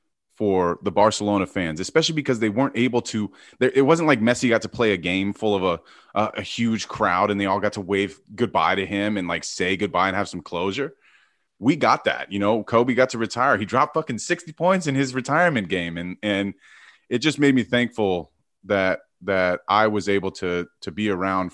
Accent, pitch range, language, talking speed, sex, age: American, 95-115 Hz, English, 215 wpm, male, 30-49